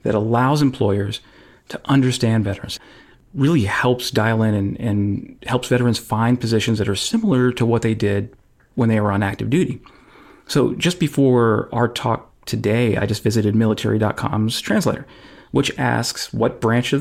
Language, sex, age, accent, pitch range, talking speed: English, male, 40-59, American, 110-130 Hz, 160 wpm